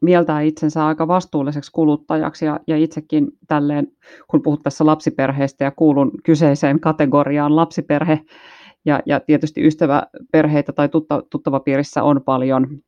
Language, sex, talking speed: Finnish, female, 130 wpm